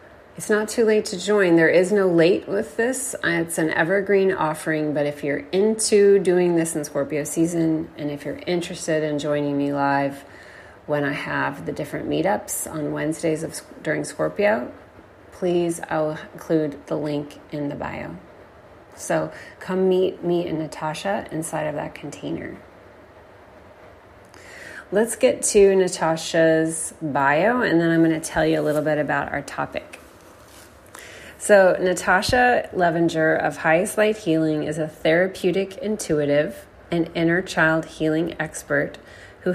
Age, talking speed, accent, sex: 30-49, 145 wpm, American, female